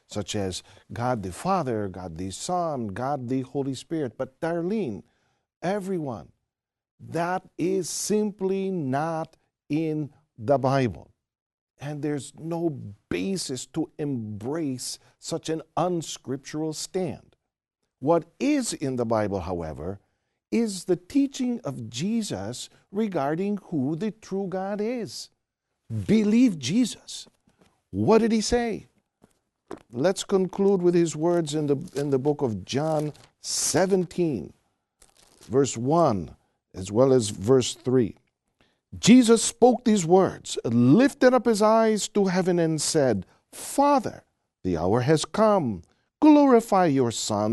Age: 50-69